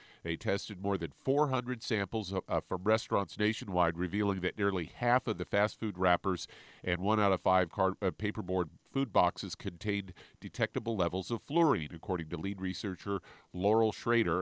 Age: 50-69